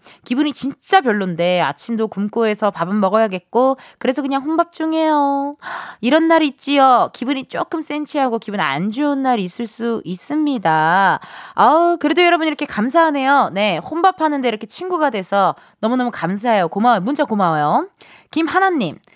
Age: 20-39